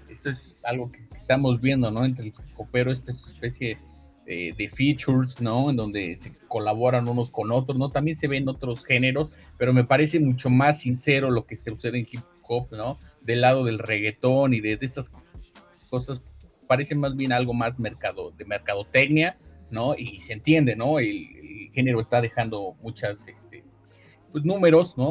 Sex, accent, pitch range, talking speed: male, Mexican, 115-135 Hz, 180 wpm